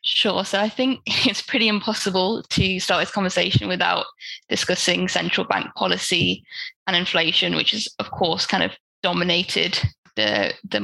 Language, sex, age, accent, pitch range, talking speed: English, female, 10-29, British, 175-205 Hz, 150 wpm